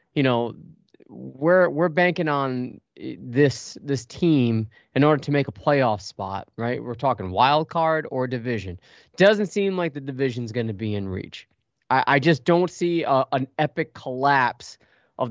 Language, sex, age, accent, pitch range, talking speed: English, male, 20-39, American, 115-145 Hz, 170 wpm